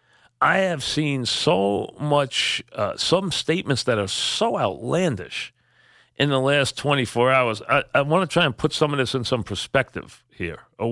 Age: 40-59